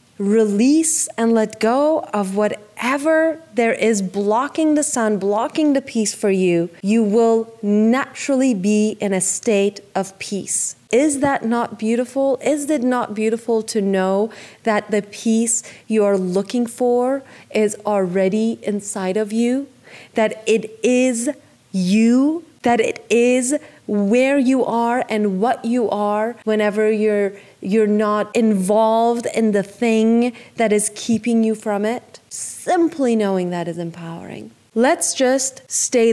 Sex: female